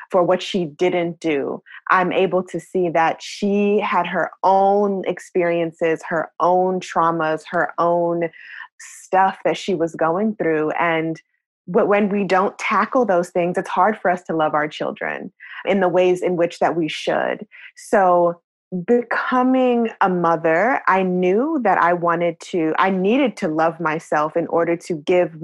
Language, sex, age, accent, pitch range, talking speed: English, female, 20-39, American, 170-195 Hz, 160 wpm